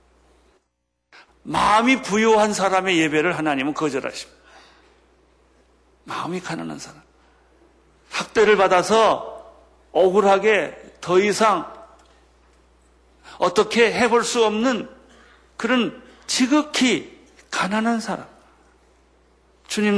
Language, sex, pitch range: Korean, male, 155-225 Hz